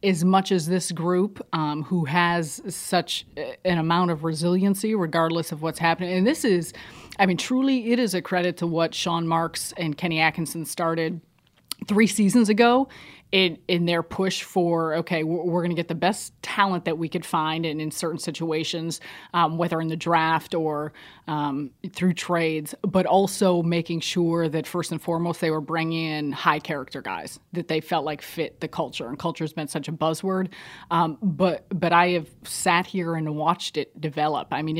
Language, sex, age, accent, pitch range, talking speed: English, female, 30-49, American, 155-180 Hz, 190 wpm